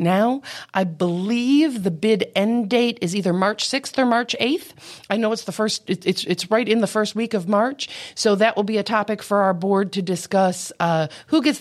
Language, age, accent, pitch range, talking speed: English, 40-59, American, 175-210 Hz, 215 wpm